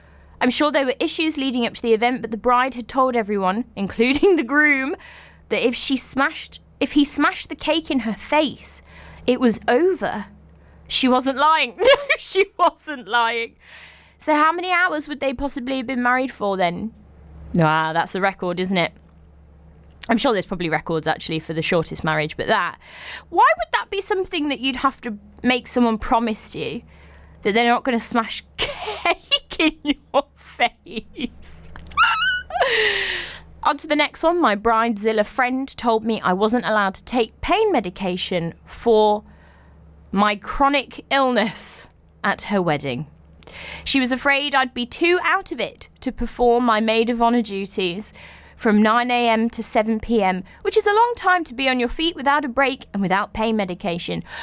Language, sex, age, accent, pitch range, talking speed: English, female, 20-39, British, 195-290 Hz, 170 wpm